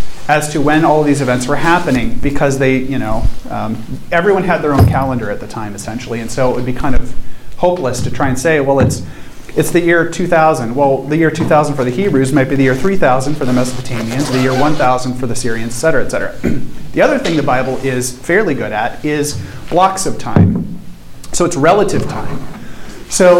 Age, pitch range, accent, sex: 40-59, 125-155 Hz, American, male